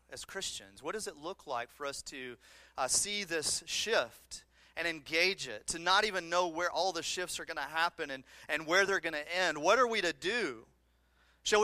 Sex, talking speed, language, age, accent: male, 215 wpm, English, 30-49, American